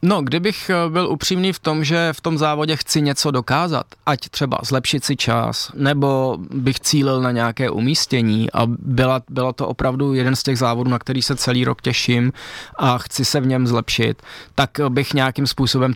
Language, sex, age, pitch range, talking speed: Czech, male, 20-39, 120-135 Hz, 185 wpm